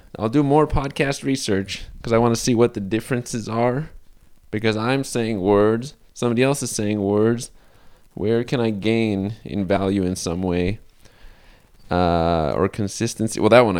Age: 20-39